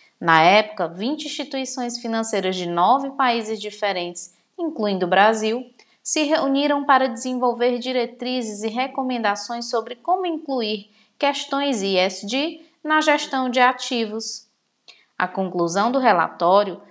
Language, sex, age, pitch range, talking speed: Portuguese, female, 20-39, 195-255 Hz, 115 wpm